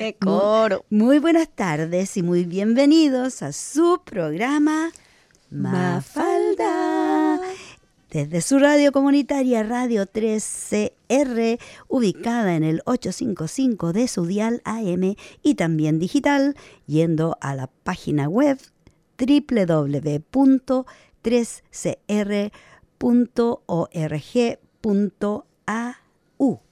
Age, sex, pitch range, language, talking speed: 50-69, female, 165-270 Hz, English, 80 wpm